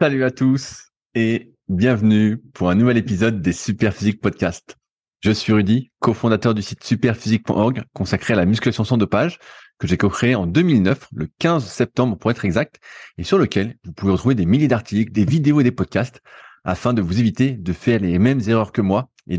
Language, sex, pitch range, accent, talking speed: French, male, 95-125 Hz, French, 190 wpm